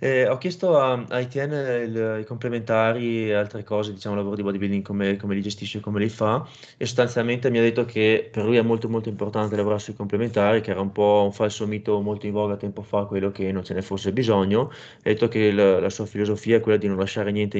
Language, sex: Italian, male